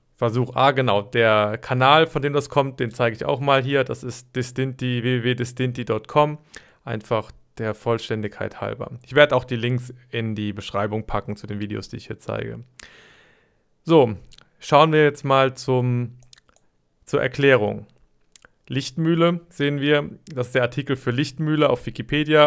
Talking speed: 150 wpm